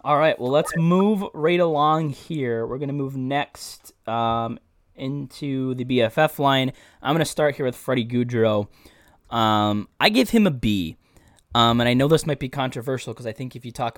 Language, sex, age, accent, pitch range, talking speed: English, male, 20-39, American, 110-140 Hz, 200 wpm